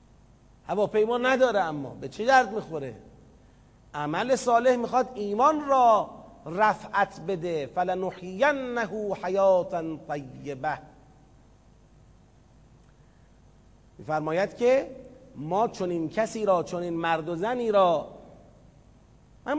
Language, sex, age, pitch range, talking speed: Persian, male, 40-59, 195-260 Hz, 100 wpm